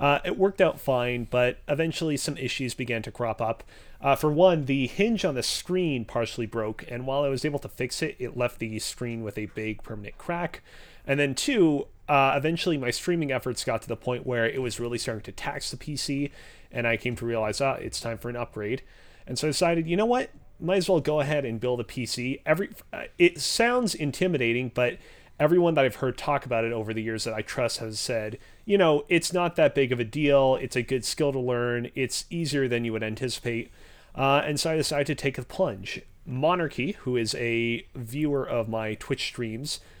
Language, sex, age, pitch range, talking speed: English, male, 30-49, 115-145 Hz, 225 wpm